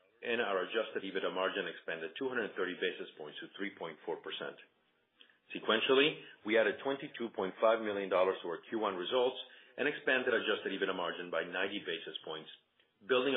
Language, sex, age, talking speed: English, male, 40-59, 135 wpm